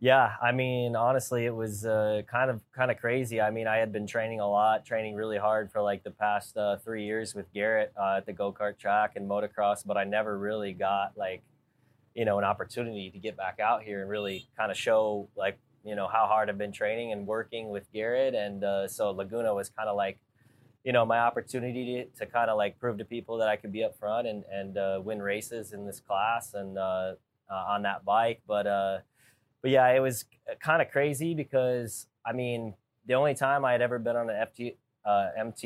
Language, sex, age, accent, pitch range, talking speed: English, male, 20-39, American, 100-120 Hz, 225 wpm